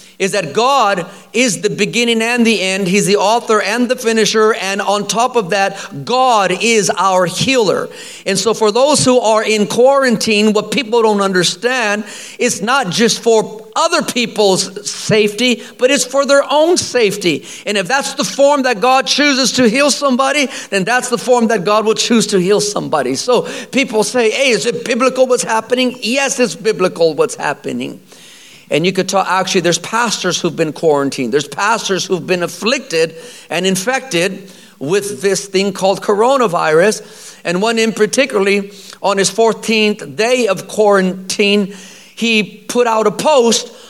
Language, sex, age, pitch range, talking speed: English, male, 50-69, 195-245 Hz, 165 wpm